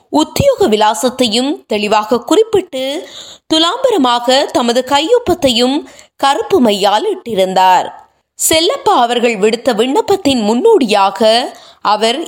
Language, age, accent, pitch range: Tamil, 20-39, native, 220-315 Hz